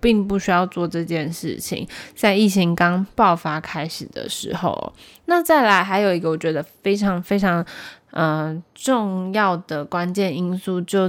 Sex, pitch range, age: female, 170-215 Hz, 20-39